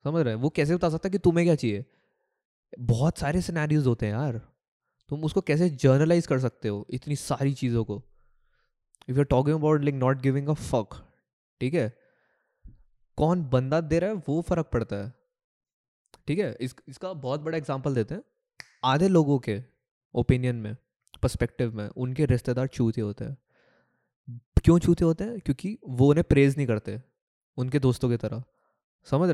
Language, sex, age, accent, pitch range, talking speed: Hindi, male, 20-39, native, 125-160 Hz, 170 wpm